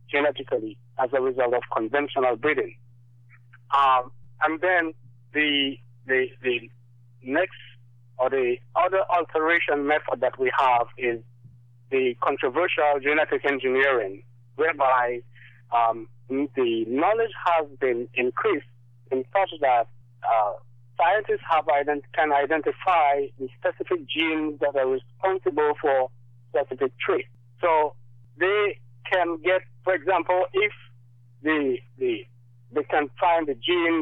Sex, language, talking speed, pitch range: male, English, 115 wpm, 120-160 Hz